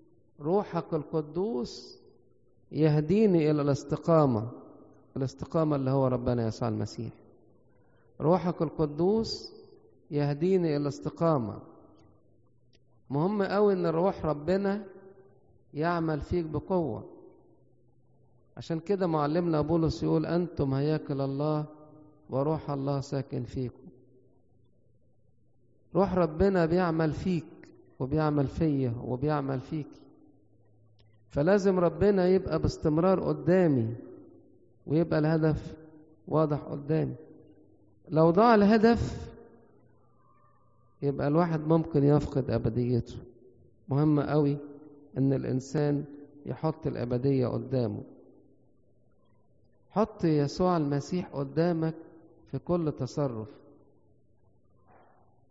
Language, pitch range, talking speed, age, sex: English, 125-165 Hz, 80 wpm, 50-69, male